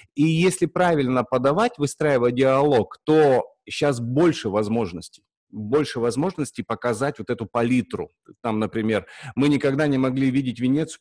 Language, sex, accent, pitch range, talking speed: Russian, male, native, 120-145 Hz, 130 wpm